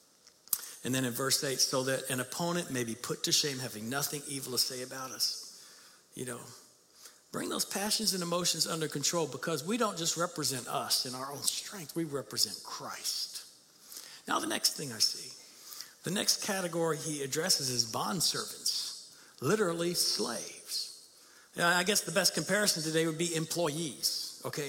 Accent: American